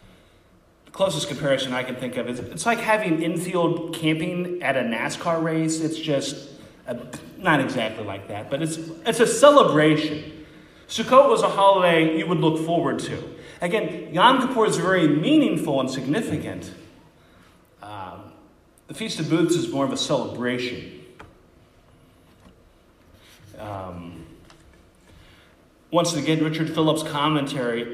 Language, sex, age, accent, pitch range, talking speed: English, male, 30-49, American, 140-170 Hz, 130 wpm